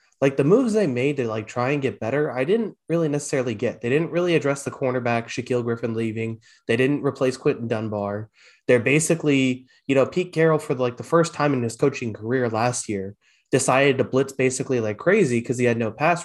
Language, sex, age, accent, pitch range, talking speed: English, male, 20-39, American, 115-150 Hz, 215 wpm